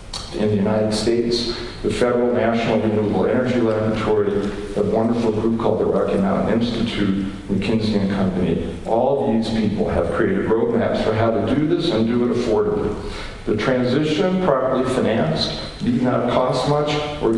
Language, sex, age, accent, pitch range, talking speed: English, male, 50-69, American, 110-150 Hz, 155 wpm